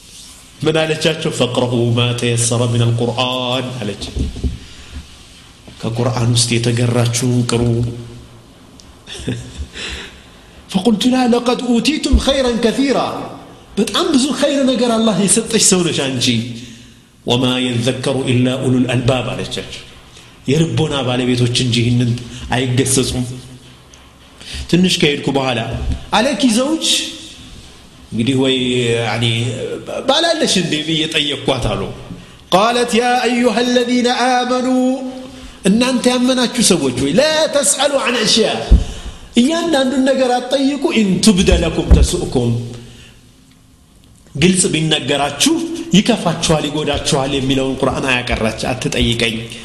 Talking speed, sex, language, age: 80 wpm, male, Amharic, 40-59